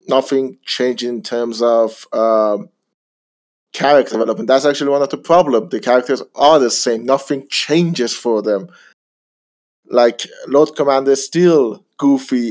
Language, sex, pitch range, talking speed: English, male, 115-145 Hz, 140 wpm